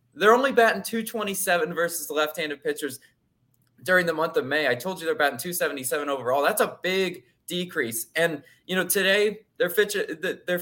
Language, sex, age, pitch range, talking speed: English, male, 20-39, 140-205 Hz, 175 wpm